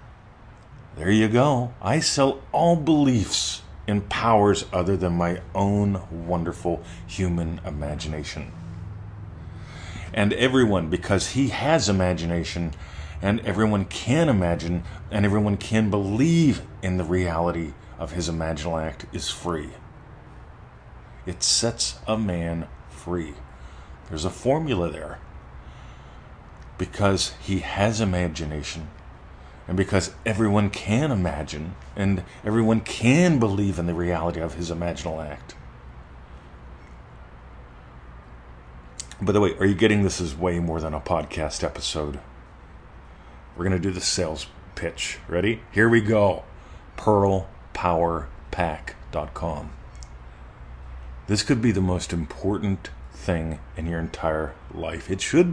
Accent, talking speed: American, 115 wpm